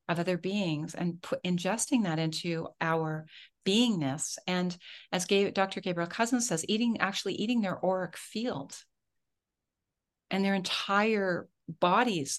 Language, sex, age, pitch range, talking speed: English, female, 40-59, 155-185 Hz, 120 wpm